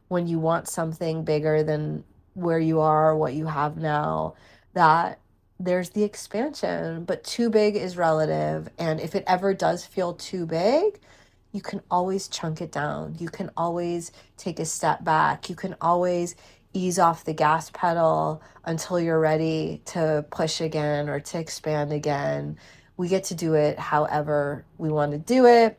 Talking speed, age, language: 170 wpm, 30-49, English